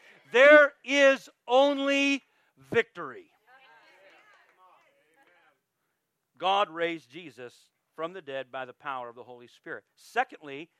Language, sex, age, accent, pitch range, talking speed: English, male, 40-59, American, 165-250 Hz, 100 wpm